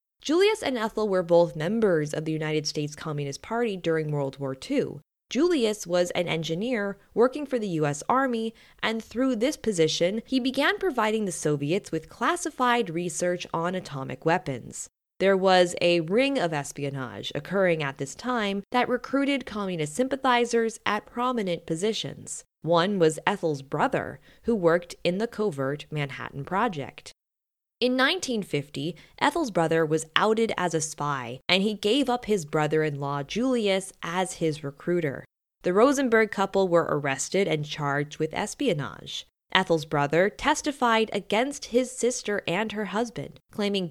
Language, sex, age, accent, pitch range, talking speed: English, female, 20-39, American, 155-230 Hz, 145 wpm